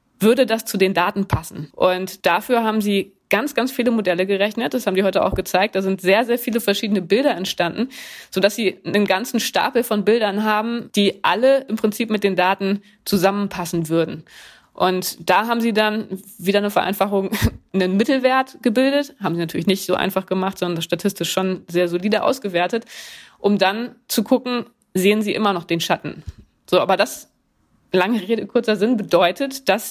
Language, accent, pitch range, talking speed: German, German, 180-220 Hz, 180 wpm